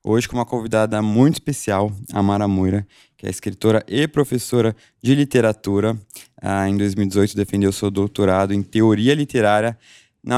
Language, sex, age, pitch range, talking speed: Portuguese, male, 20-39, 105-130 Hz, 145 wpm